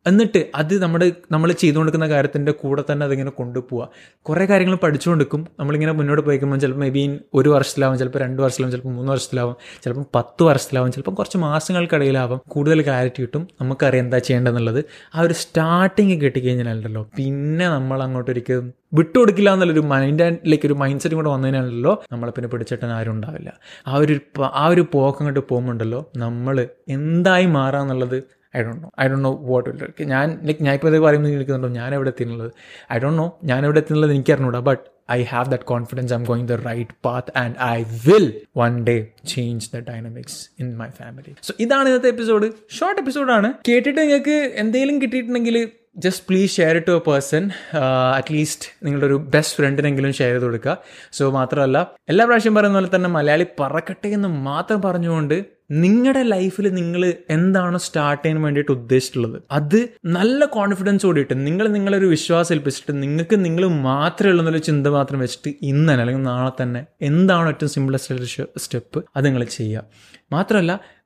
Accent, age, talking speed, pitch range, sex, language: native, 20-39, 175 wpm, 130-175 Hz, male, Malayalam